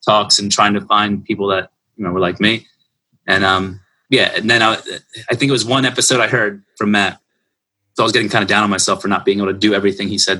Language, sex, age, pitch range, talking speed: English, male, 30-49, 100-125 Hz, 265 wpm